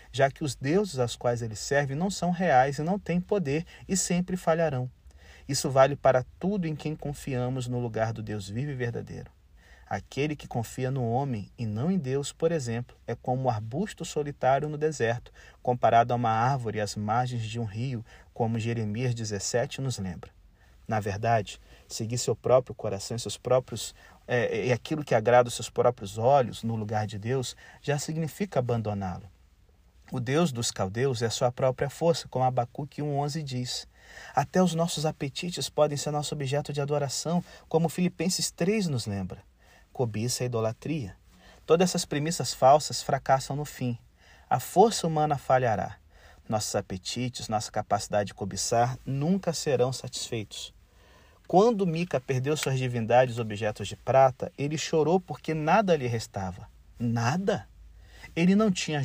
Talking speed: 165 wpm